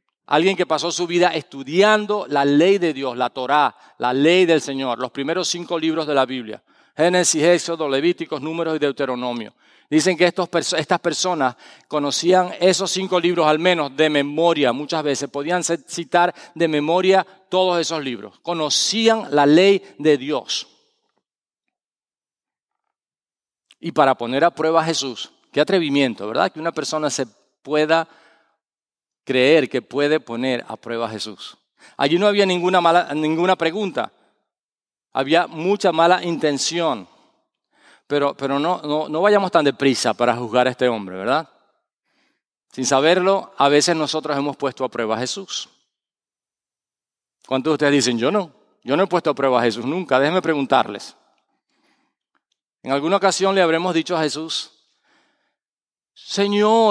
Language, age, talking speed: English, 40-59, 145 wpm